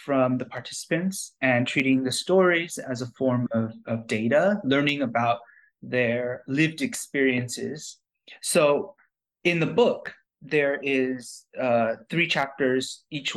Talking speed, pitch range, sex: 125 wpm, 120-155 Hz, male